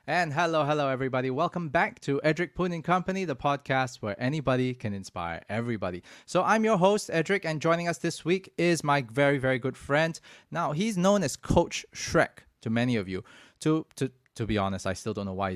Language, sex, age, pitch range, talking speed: English, male, 20-39, 110-150 Hz, 200 wpm